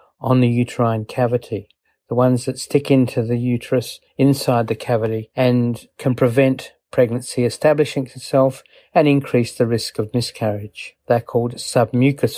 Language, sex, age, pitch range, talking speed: English, male, 50-69, 120-135 Hz, 140 wpm